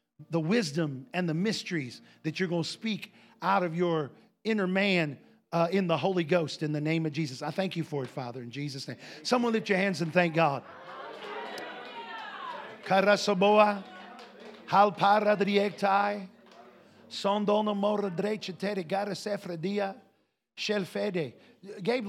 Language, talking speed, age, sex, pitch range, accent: English, 115 wpm, 50-69, male, 165-220 Hz, American